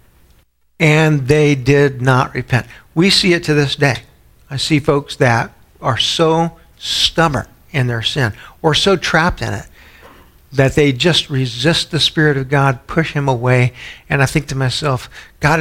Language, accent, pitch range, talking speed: English, American, 130-165 Hz, 165 wpm